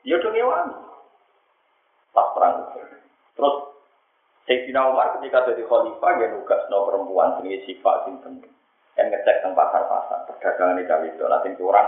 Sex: male